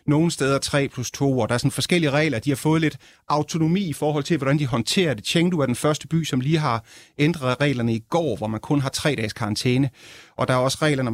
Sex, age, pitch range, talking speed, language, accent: male, 30-49, 125-155 Hz, 260 wpm, Danish, native